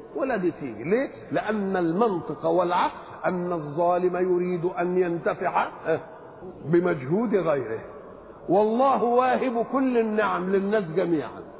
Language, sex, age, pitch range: Chinese, male, 50-69, 175-220 Hz